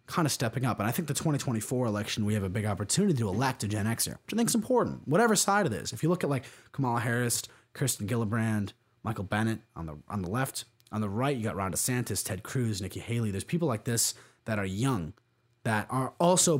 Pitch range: 105-130 Hz